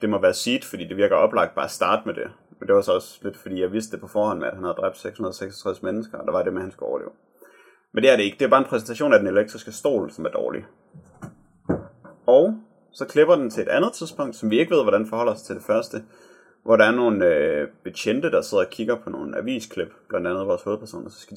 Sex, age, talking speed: male, 30-49, 270 wpm